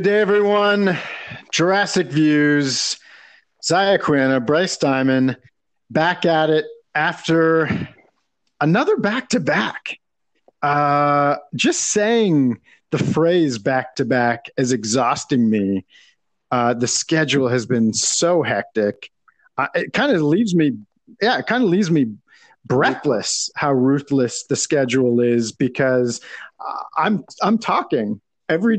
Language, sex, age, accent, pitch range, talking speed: English, male, 40-59, American, 130-175 Hz, 120 wpm